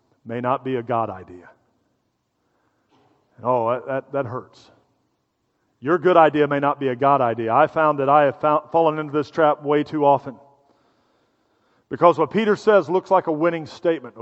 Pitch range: 150-210 Hz